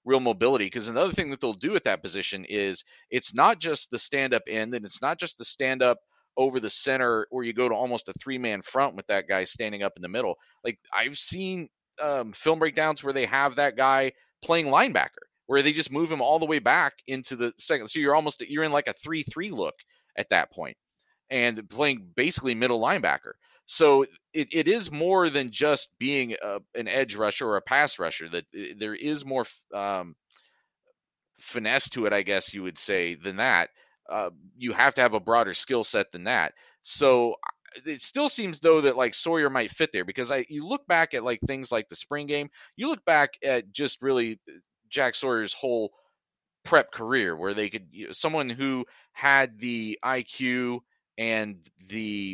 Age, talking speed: 40-59, 200 wpm